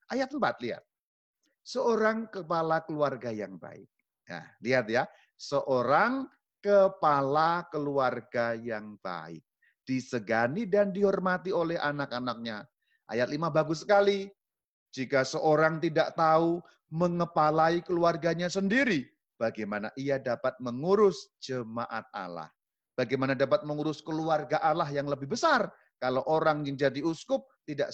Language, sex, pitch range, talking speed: Indonesian, male, 130-195 Hz, 110 wpm